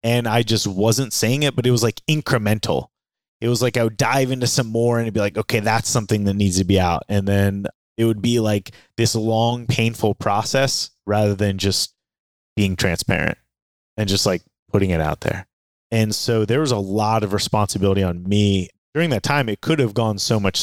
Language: English